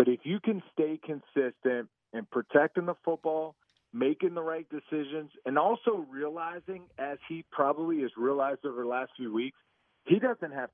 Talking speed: 170 wpm